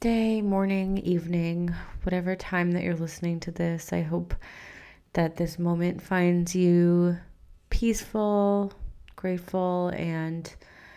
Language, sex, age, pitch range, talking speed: English, female, 20-39, 170-200 Hz, 110 wpm